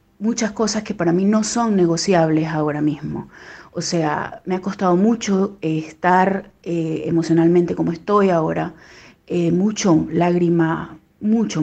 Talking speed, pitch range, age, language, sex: 135 wpm, 165-200 Hz, 30-49, Spanish, female